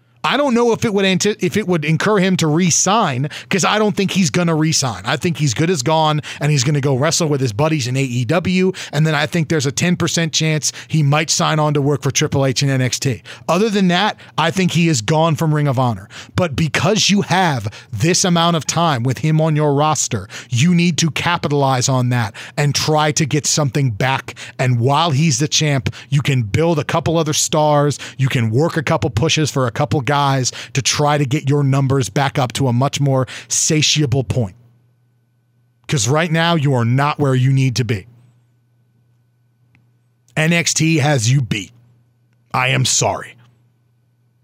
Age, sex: 40-59, male